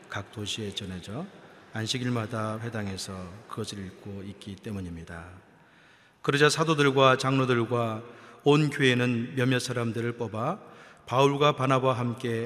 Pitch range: 105-130 Hz